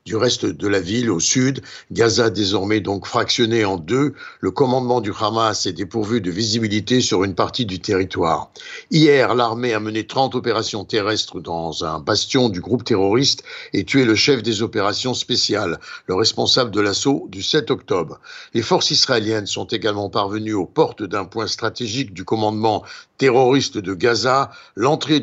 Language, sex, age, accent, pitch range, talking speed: French, male, 60-79, French, 110-135 Hz, 165 wpm